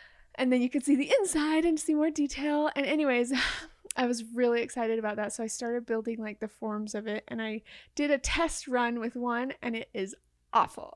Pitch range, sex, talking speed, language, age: 230-290 Hz, female, 220 wpm, English, 20-39